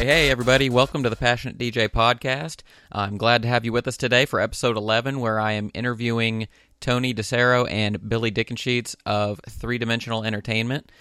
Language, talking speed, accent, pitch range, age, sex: English, 175 wpm, American, 105-115 Hz, 30-49, male